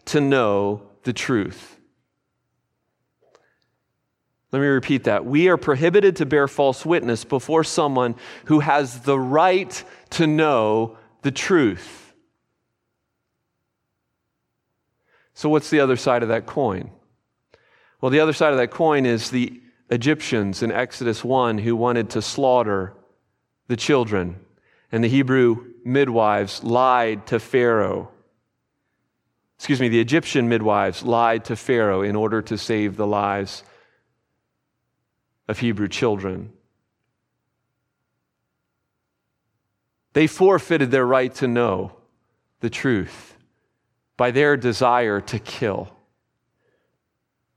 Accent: American